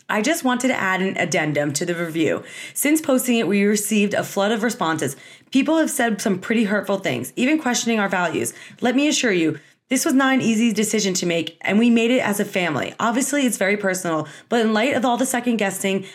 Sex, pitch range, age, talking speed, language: female, 200-255 Hz, 30-49, 225 wpm, English